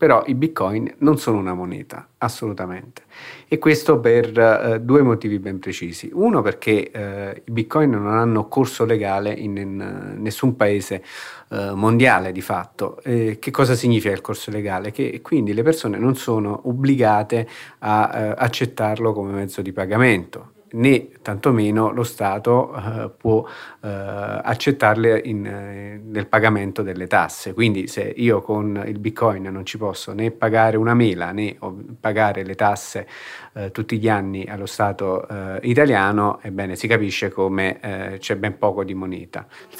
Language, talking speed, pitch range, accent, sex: Italian, 150 wpm, 100-115 Hz, native, male